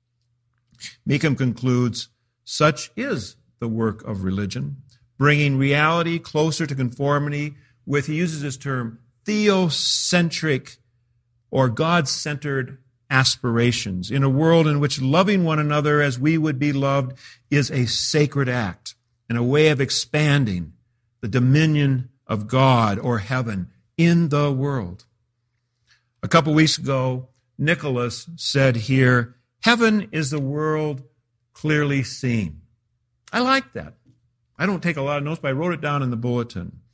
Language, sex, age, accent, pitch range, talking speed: English, male, 50-69, American, 120-150 Hz, 135 wpm